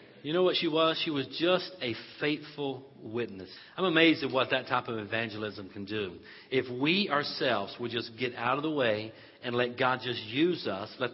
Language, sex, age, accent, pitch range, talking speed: English, male, 50-69, American, 135-205 Hz, 205 wpm